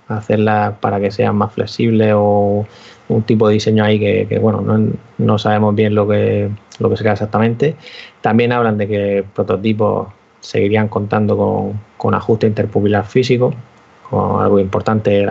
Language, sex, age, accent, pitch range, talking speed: Spanish, male, 20-39, Spanish, 100-115 Hz, 155 wpm